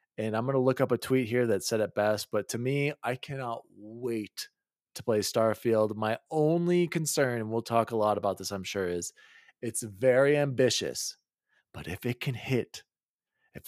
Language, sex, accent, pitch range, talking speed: English, male, American, 115-160 Hz, 195 wpm